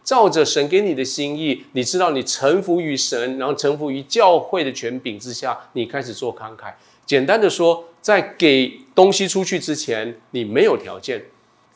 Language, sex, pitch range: Chinese, male, 130-190 Hz